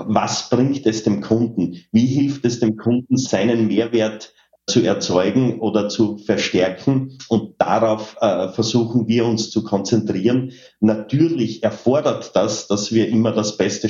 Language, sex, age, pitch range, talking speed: German, male, 30-49, 105-120 Hz, 140 wpm